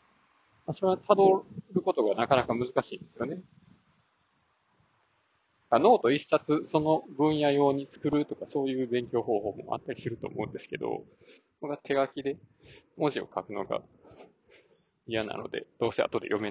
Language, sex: Japanese, male